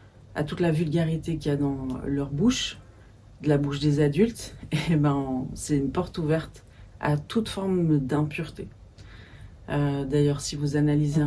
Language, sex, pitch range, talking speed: French, female, 140-170 Hz, 165 wpm